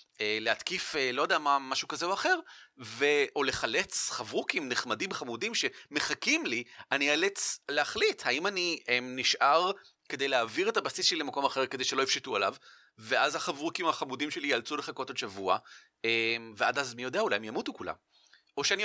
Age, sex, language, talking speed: 30-49, male, Hebrew, 160 wpm